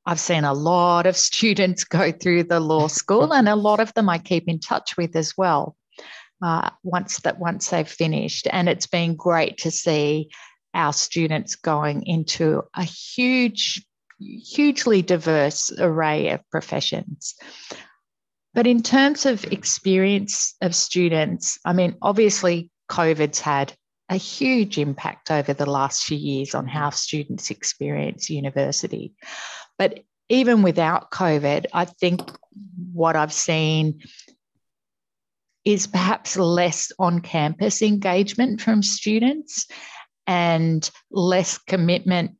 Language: English